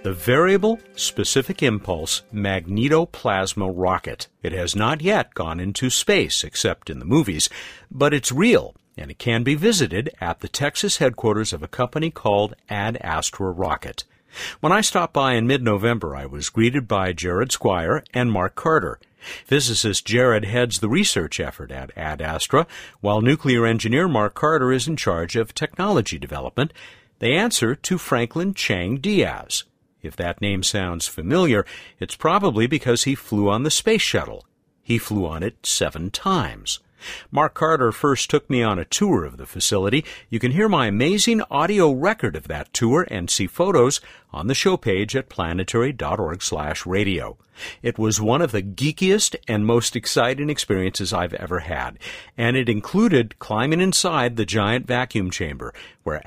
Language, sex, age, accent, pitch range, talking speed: English, male, 50-69, American, 95-140 Hz, 160 wpm